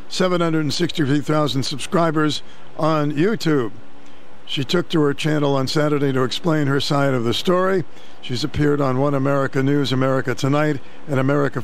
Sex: male